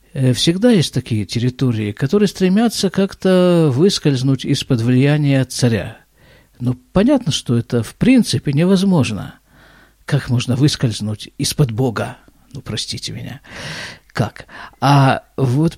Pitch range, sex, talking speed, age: 125-190 Hz, male, 110 wpm, 50-69